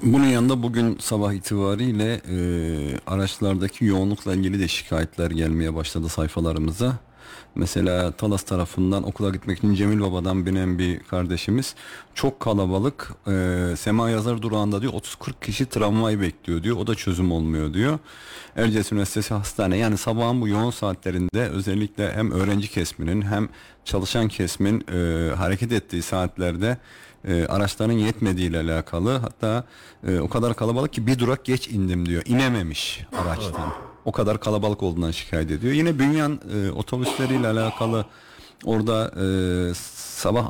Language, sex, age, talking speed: Turkish, male, 40-59, 135 wpm